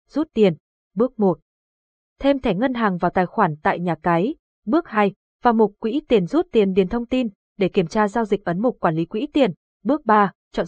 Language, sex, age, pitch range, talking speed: Vietnamese, female, 20-39, 185-235 Hz, 220 wpm